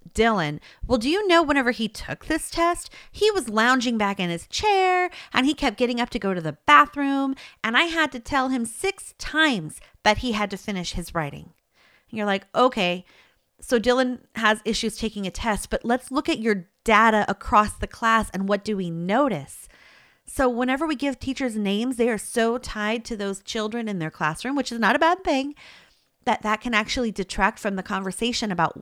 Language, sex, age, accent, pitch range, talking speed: English, female, 30-49, American, 185-250 Hz, 200 wpm